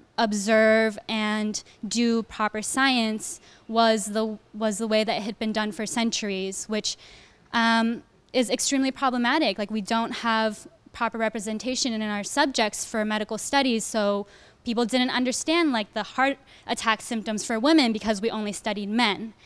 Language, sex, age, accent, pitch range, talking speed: English, female, 10-29, American, 215-240 Hz, 155 wpm